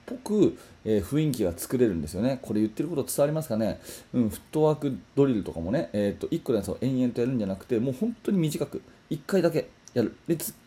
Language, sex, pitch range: Japanese, male, 105-145 Hz